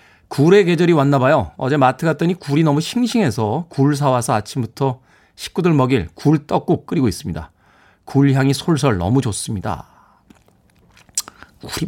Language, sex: Korean, male